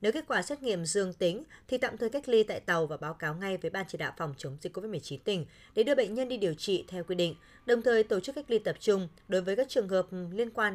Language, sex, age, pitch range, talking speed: Vietnamese, female, 20-39, 175-240 Hz, 290 wpm